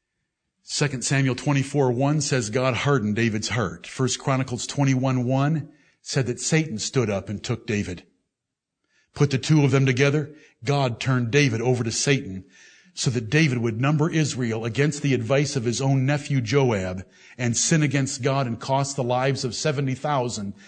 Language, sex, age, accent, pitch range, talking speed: English, male, 60-79, American, 115-145 Hz, 165 wpm